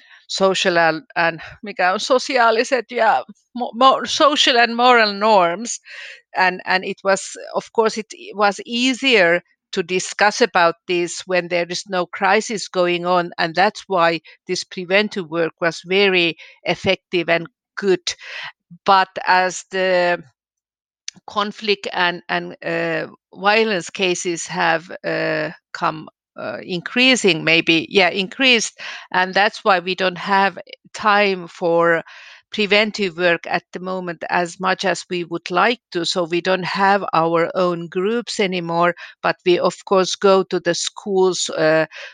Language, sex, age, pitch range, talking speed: Finnish, female, 50-69, 170-195 Hz, 135 wpm